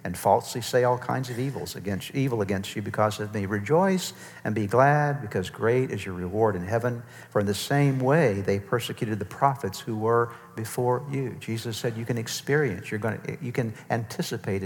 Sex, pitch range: male, 115-170 Hz